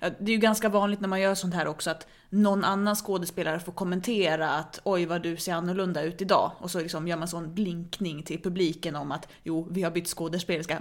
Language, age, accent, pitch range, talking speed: Swedish, 20-39, native, 170-200 Hz, 230 wpm